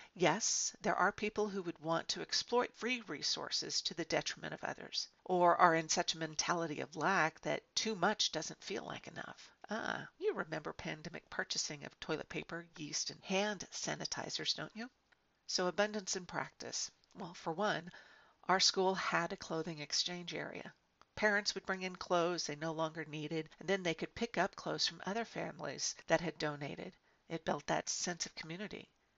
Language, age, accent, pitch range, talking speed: English, 50-69, American, 160-210 Hz, 180 wpm